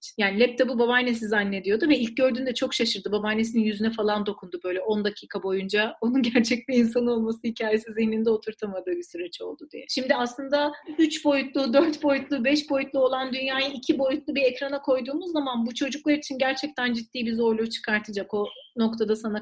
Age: 40-59